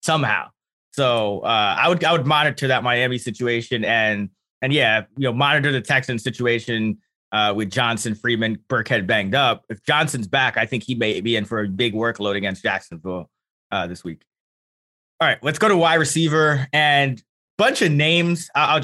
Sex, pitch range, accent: male, 125-150 Hz, American